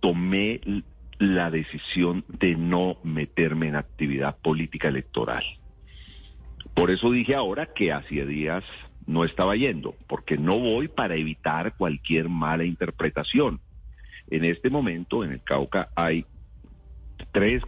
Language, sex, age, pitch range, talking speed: Spanish, male, 40-59, 75-90 Hz, 120 wpm